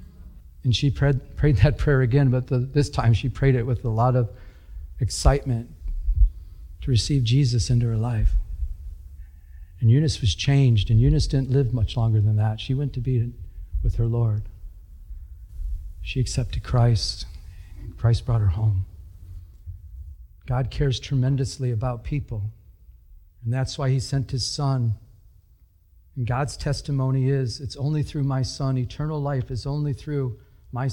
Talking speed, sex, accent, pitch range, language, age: 150 wpm, male, American, 85-140 Hz, English, 50-69